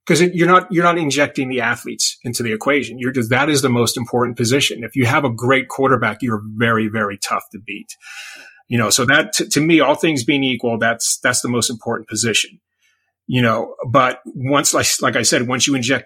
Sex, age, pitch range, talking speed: male, 30-49, 125-165 Hz, 220 wpm